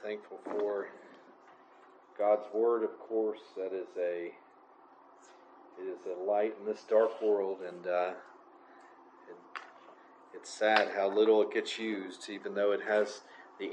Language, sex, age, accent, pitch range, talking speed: English, male, 40-59, American, 105-140 Hz, 140 wpm